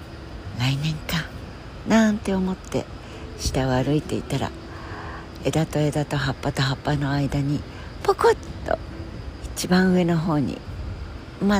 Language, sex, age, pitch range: Japanese, female, 60-79, 100-150 Hz